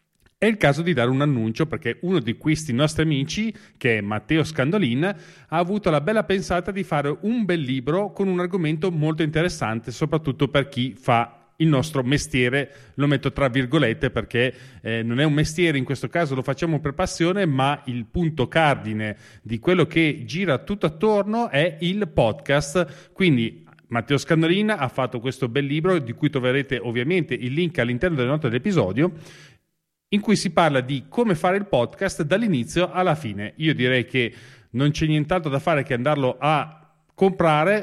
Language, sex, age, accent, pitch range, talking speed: Italian, male, 40-59, native, 130-180 Hz, 175 wpm